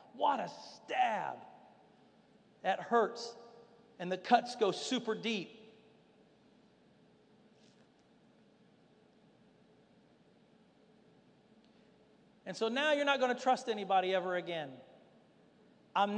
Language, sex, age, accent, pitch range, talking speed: English, male, 50-69, American, 205-245 Hz, 85 wpm